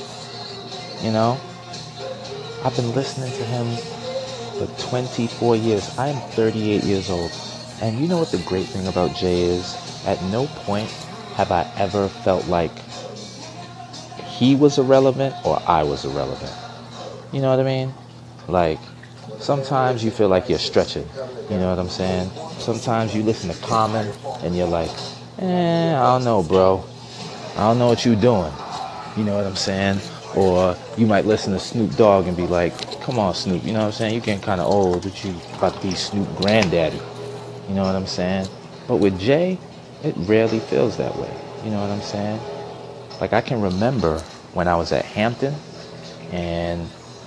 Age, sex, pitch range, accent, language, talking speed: 30-49, male, 90-125 Hz, American, English, 175 wpm